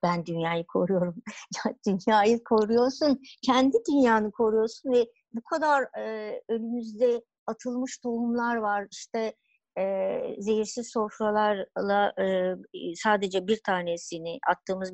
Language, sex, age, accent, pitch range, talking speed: Turkish, male, 60-79, native, 185-230 Hz, 100 wpm